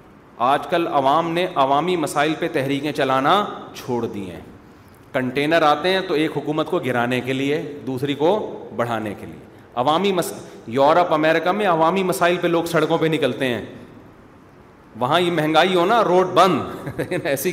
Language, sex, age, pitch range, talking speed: Urdu, male, 40-59, 140-185 Hz, 165 wpm